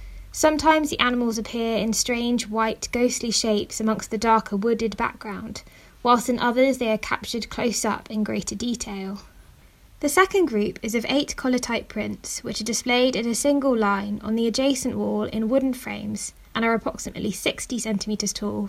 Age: 20-39